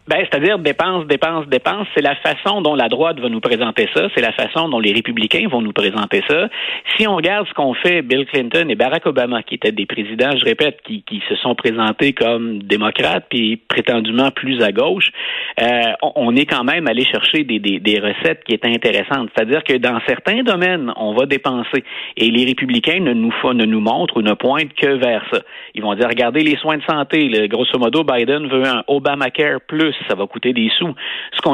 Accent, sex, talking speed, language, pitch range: Canadian, male, 220 wpm, French, 115-160 Hz